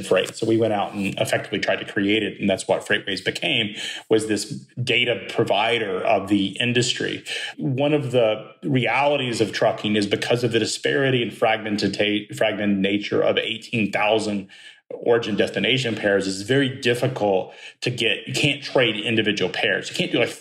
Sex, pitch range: male, 105-135 Hz